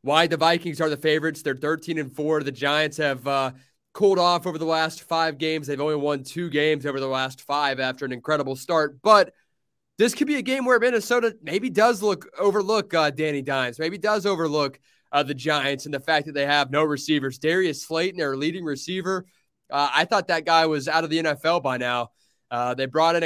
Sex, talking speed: male, 215 wpm